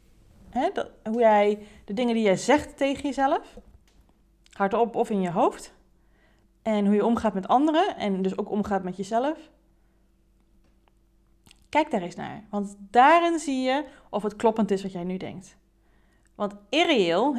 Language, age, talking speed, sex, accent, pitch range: Dutch, 30-49, 160 wpm, female, Dutch, 200-280 Hz